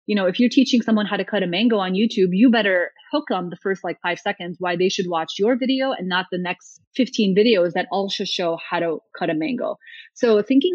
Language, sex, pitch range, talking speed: English, female, 185-245 Hz, 250 wpm